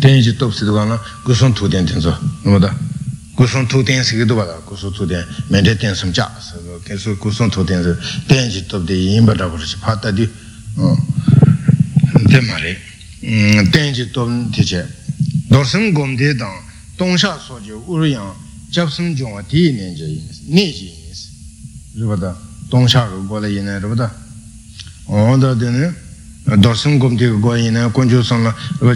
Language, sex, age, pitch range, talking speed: Italian, male, 60-79, 105-140 Hz, 60 wpm